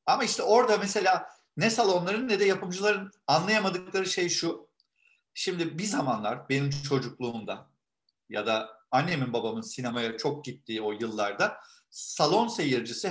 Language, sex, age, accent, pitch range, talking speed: Turkish, male, 50-69, native, 130-195 Hz, 130 wpm